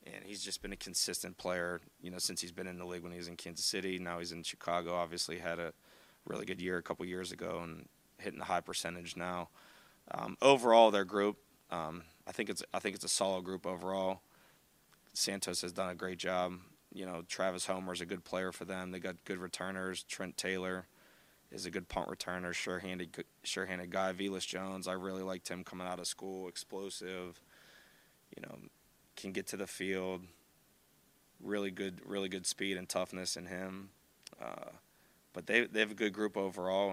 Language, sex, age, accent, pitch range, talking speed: English, male, 20-39, American, 90-95 Hz, 200 wpm